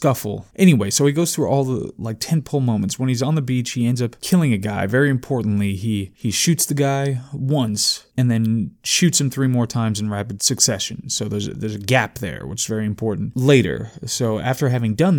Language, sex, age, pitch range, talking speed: English, male, 20-39, 110-130 Hz, 225 wpm